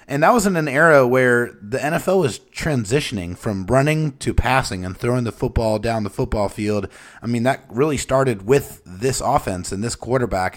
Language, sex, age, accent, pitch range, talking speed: English, male, 30-49, American, 105-130 Hz, 195 wpm